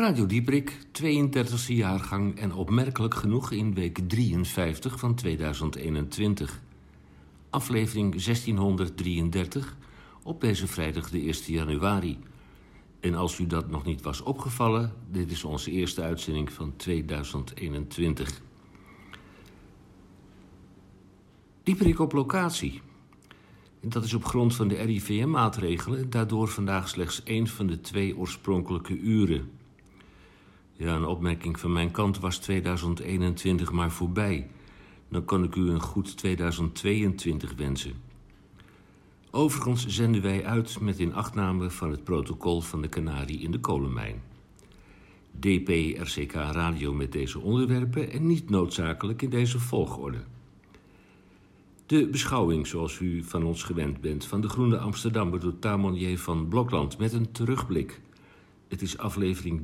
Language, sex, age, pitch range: Dutch, male, 60-79, 85-110 Hz